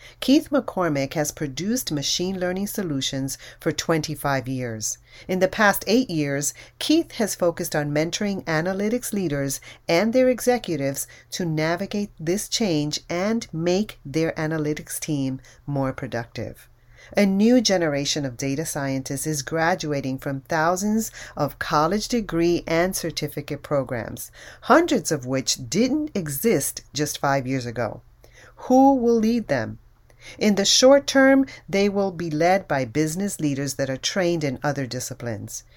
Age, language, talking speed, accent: 40-59, English, 140 wpm, American